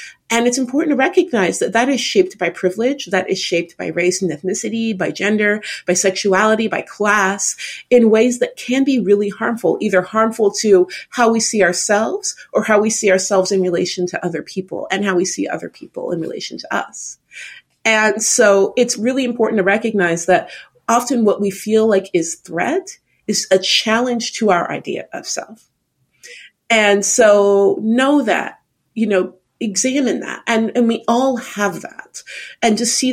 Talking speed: 180 wpm